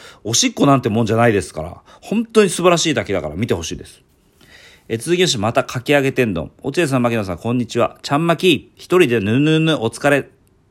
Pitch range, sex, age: 90-145 Hz, male, 40-59